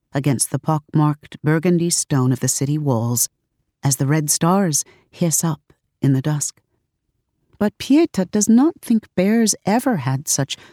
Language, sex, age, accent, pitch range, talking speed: English, female, 50-69, American, 130-170 Hz, 150 wpm